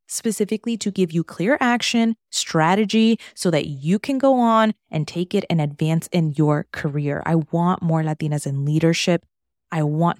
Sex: female